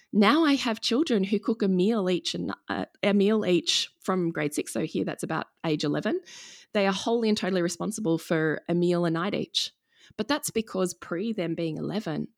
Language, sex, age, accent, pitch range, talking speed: English, female, 20-39, Australian, 160-205 Hz, 205 wpm